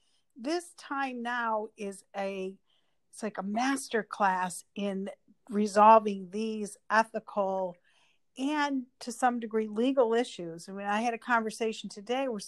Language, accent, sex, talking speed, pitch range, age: English, American, female, 135 wpm, 205-265 Hz, 50-69